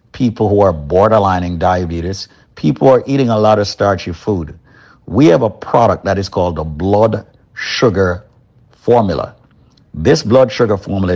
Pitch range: 95-125 Hz